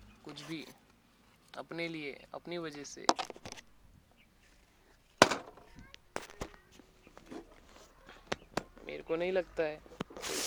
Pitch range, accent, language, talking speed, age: 115-165 Hz, native, Marathi, 75 wpm, 20-39